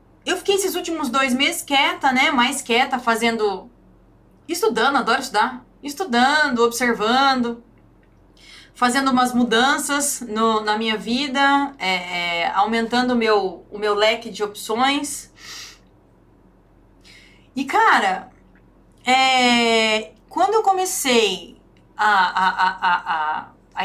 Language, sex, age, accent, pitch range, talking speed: Portuguese, female, 30-49, Brazilian, 215-285 Hz, 115 wpm